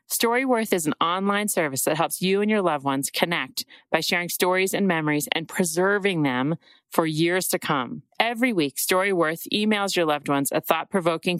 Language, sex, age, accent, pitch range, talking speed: English, female, 40-59, American, 160-210 Hz, 180 wpm